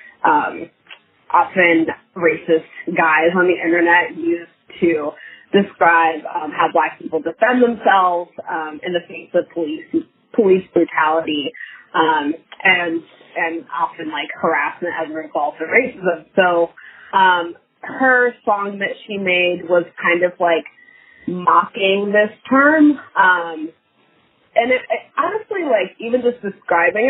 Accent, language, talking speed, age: American, English, 130 wpm, 20-39